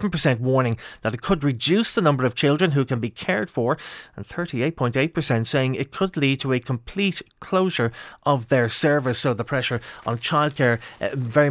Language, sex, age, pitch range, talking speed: English, male, 30-49, 125-160 Hz, 180 wpm